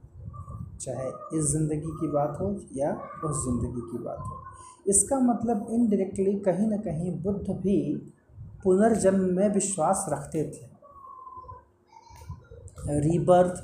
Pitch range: 145-200 Hz